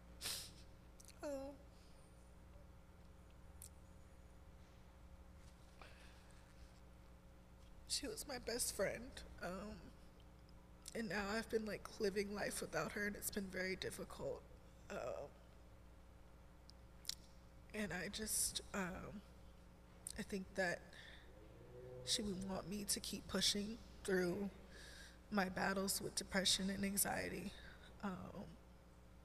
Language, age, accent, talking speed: English, 20-39, American, 90 wpm